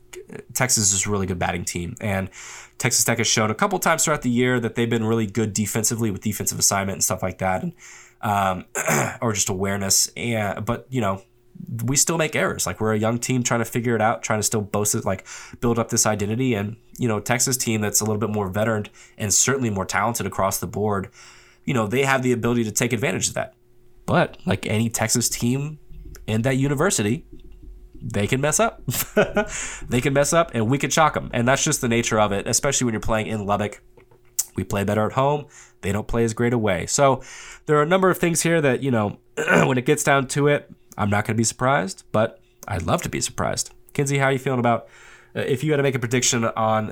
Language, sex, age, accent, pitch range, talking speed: English, male, 20-39, American, 105-130 Hz, 235 wpm